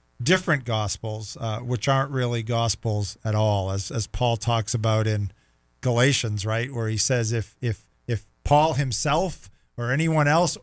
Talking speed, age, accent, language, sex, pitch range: 160 wpm, 50-69, American, English, male, 110-135 Hz